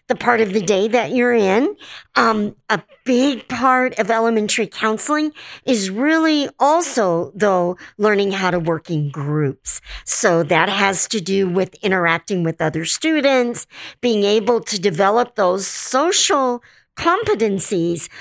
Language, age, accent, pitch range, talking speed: English, 50-69, American, 185-245 Hz, 140 wpm